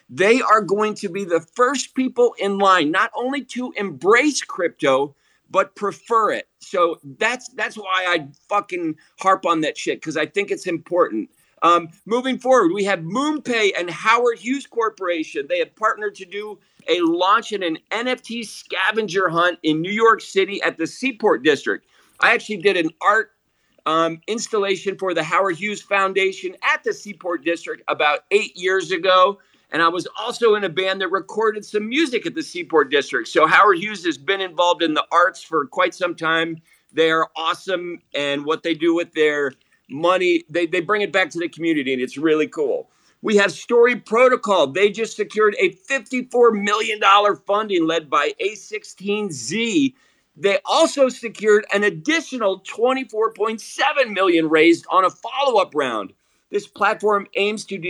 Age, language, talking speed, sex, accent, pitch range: 50-69, English, 170 wpm, male, American, 175-250 Hz